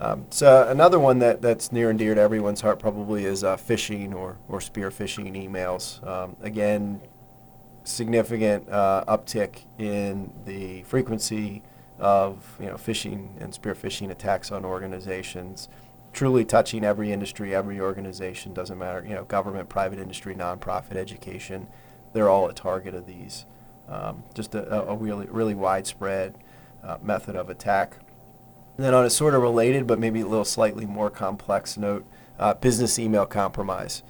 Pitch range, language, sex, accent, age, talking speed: 95-115 Hz, English, male, American, 40-59, 160 wpm